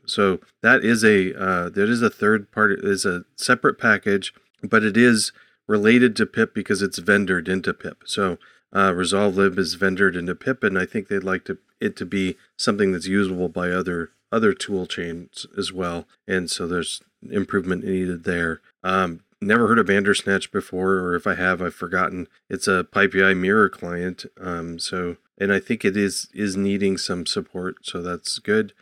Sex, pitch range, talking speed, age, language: male, 90-100 Hz, 185 wpm, 40-59, English